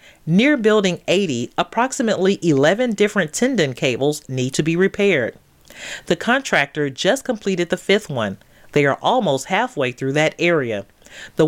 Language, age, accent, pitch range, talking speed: English, 40-59, American, 145-200 Hz, 140 wpm